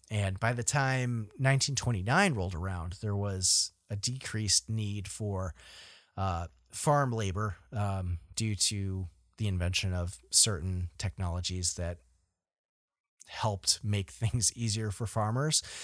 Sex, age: male, 30-49